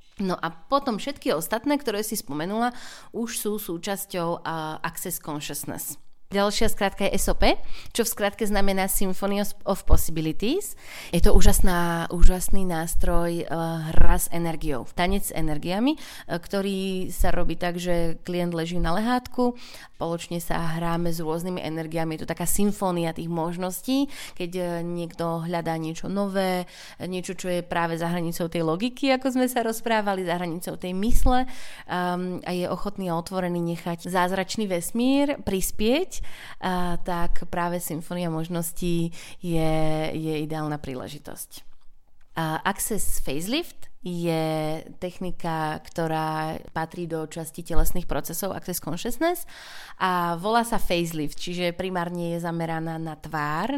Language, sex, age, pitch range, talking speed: Slovak, female, 20-39, 165-195 Hz, 130 wpm